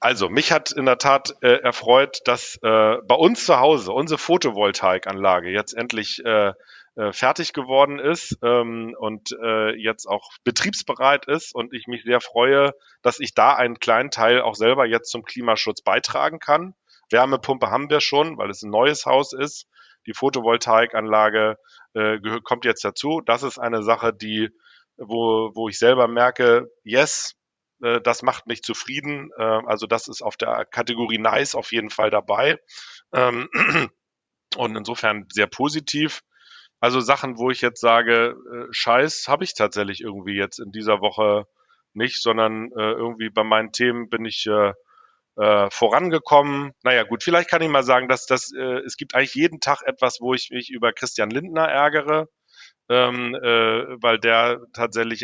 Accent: German